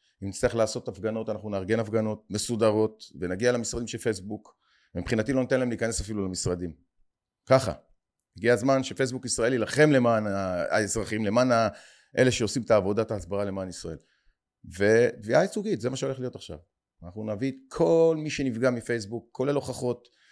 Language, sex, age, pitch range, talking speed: Hebrew, male, 40-59, 110-180 Hz, 150 wpm